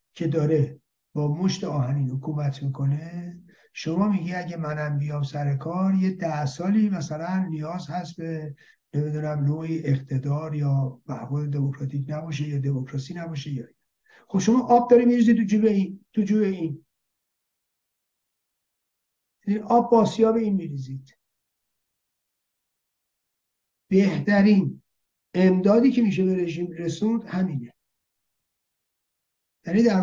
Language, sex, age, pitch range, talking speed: Persian, male, 60-79, 150-220 Hz, 110 wpm